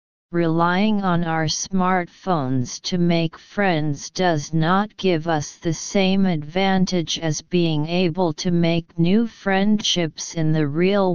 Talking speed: 130 wpm